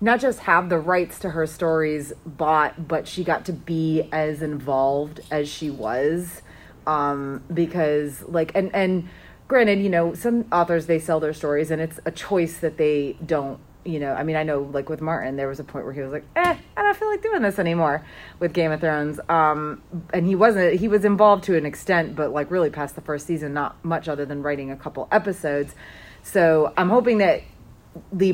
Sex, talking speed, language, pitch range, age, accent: female, 210 wpm, English, 150-175 Hz, 30-49, American